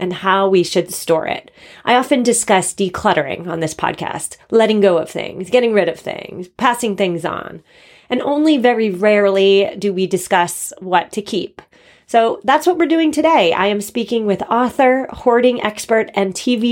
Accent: American